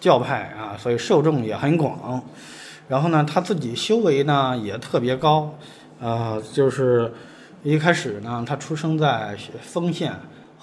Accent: native